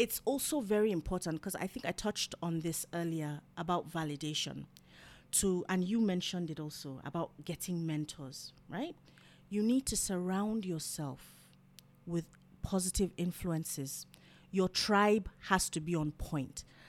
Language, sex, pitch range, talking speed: English, female, 165-215 Hz, 140 wpm